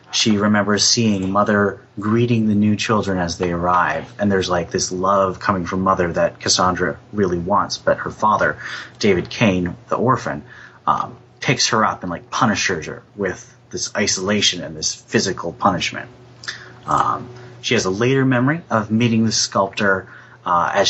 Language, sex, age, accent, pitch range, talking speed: English, male, 30-49, American, 100-120 Hz, 165 wpm